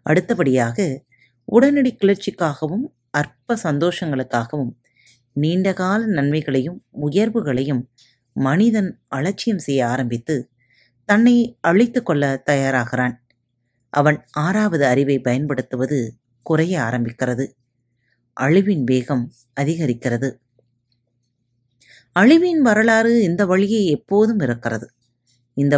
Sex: female